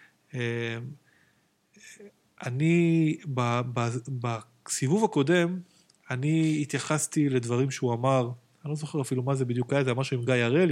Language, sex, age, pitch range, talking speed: Hebrew, male, 20-39, 125-150 Hz, 130 wpm